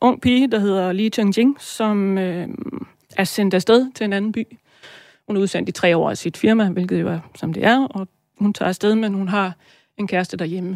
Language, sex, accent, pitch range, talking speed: Danish, female, native, 180-215 Hz, 230 wpm